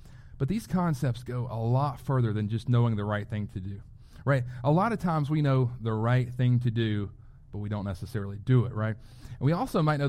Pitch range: 120-140 Hz